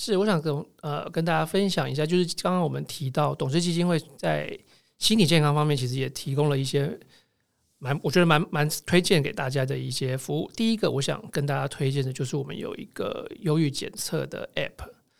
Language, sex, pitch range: Chinese, male, 135-160 Hz